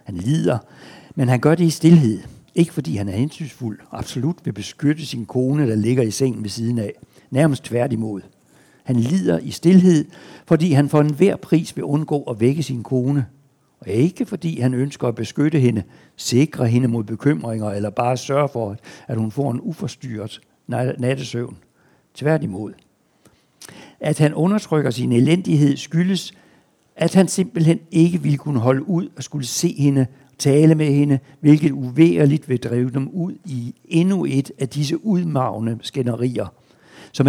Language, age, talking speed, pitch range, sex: Danish, 60-79, 165 wpm, 125-160 Hz, male